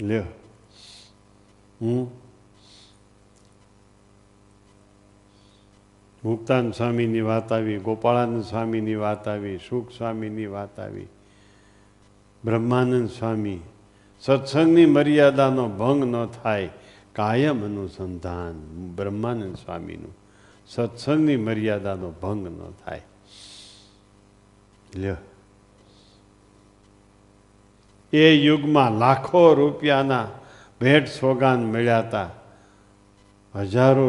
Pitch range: 100-120 Hz